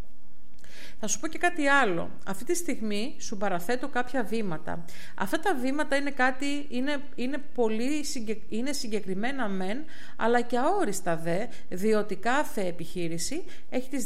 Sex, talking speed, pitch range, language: female, 145 wpm, 200-270 Hz, Greek